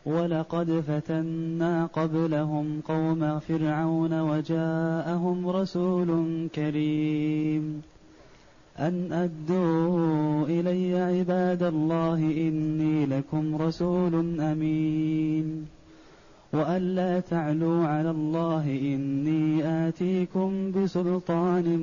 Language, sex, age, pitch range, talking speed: Arabic, male, 20-39, 155-180 Hz, 70 wpm